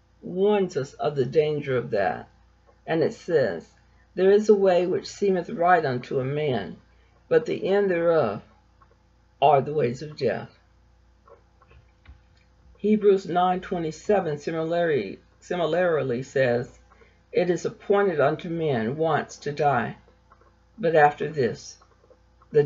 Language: English